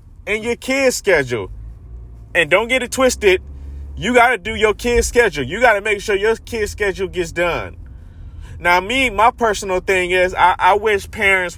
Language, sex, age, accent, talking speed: English, male, 20-39, American, 185 wpm